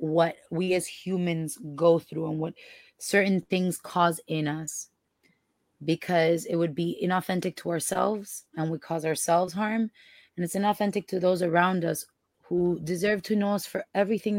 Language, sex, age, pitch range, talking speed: English, female, 20-39, 165-190 Hz, 165 wpm